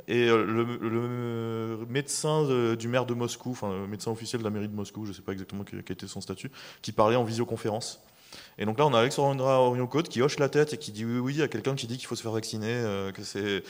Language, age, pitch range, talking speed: French, 20-39, 110-135 Hz, 255 wpm